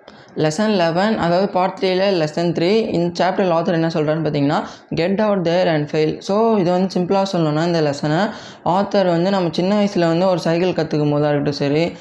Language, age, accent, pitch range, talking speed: Tamil, 20-39, native, 155-185 Hz, 175 wpm